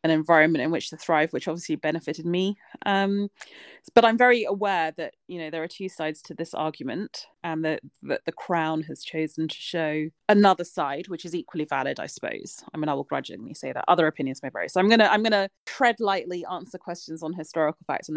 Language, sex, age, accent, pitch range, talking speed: English, female, 30-49, British, 160-190 Hz, 220 wpm